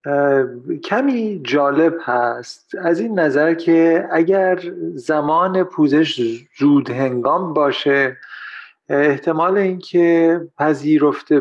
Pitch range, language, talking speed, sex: 140-185 Hz, Persian, 85 wpm, male